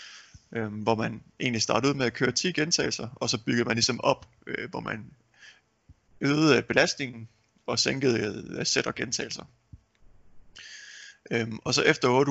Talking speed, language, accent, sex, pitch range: 150 wpm, Danish, native, male, 110-130 Hz